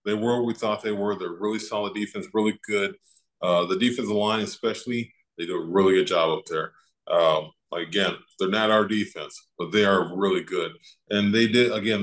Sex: male